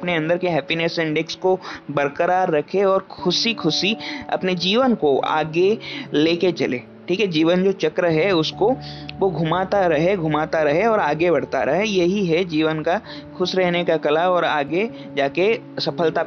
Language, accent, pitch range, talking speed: Hindi, native, 150-185 Hz, 165 wpm